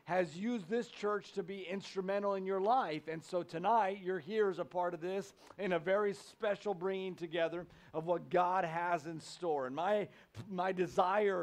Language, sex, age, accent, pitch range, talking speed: English, male, 50-69, American, 155-200 Hz, 190 wpm